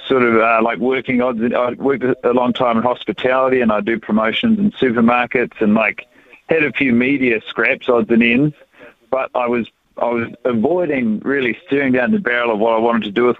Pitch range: 110-130 Hz